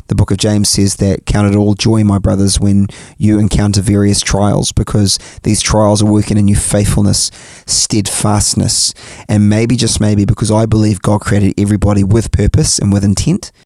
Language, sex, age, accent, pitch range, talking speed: English, male, 20-39, Australian, 100-115 Hz, 180 wpm